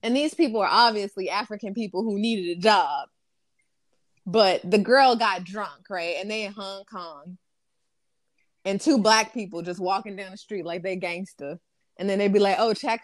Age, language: 20-39, English